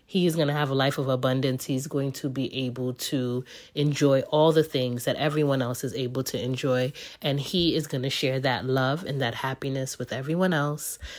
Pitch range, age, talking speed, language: 130-160 Hz, 30-49, 215 wpm, English